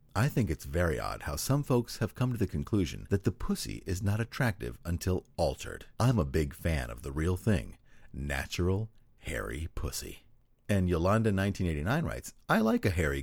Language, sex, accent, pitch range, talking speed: English, male, American, 85-125 Hz, 175 wpm